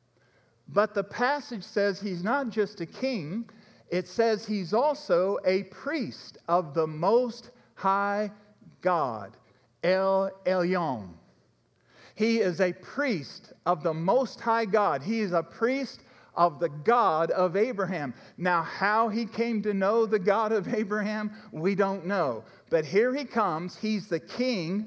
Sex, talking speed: male, 145 wpm